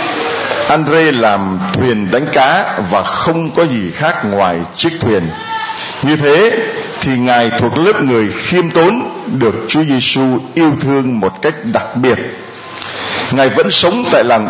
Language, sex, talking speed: Vietnamese, male, 150 wpm